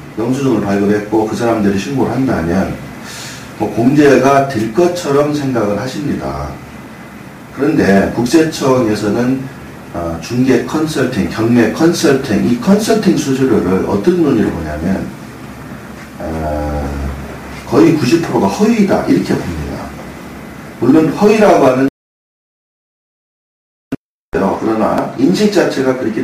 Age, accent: 40-59, native